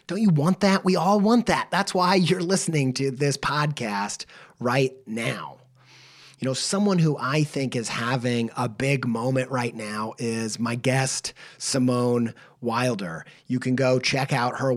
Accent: American